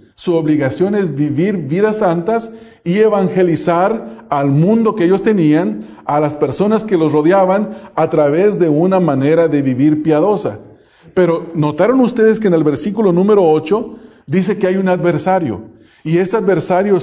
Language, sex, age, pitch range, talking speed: English, male, 40-59, 155-205 Hz, 155 wpm